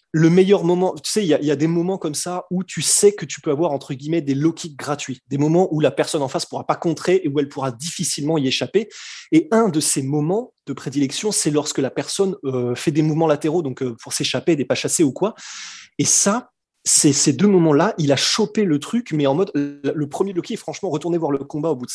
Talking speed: 270 wpm